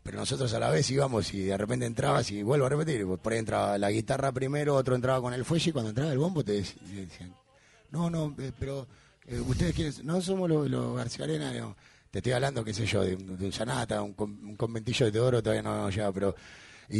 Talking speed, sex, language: 225 wpm, male, Spanish